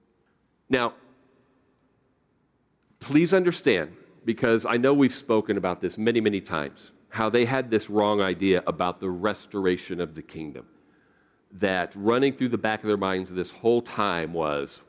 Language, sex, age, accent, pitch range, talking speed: English, male, 50-69, American, 95-120 Hz, 150 wpm